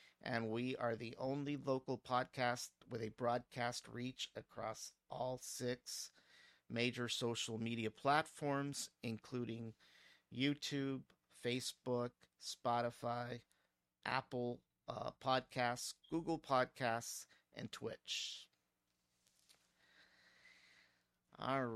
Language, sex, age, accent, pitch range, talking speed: English, male, 50-69, American, 115-130 Hz, 85 wpm